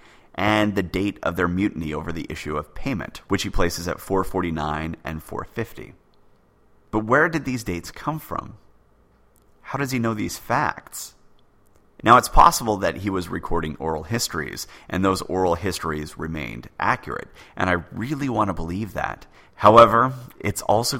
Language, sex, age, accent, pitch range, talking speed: English, male, 30-49, American, 80-110 Hz, 160 wpm